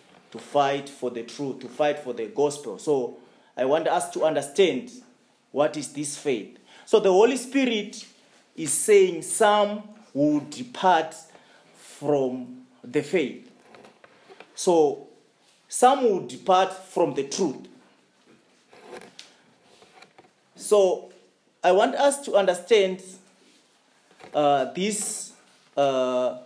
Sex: male